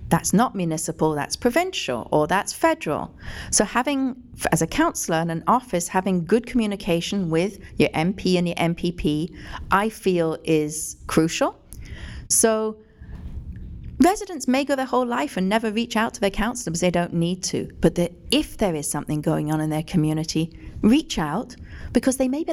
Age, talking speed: 40-59, 170 wpm